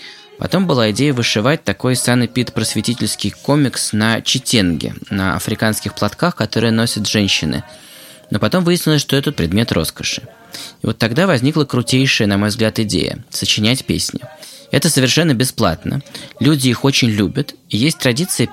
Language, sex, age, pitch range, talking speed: Russian, male, 20-39, 110-140 Hz, 145 wpm